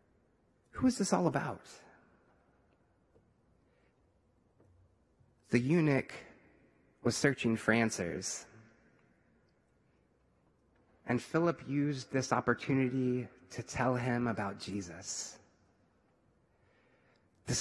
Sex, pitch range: male, 115-145 Hz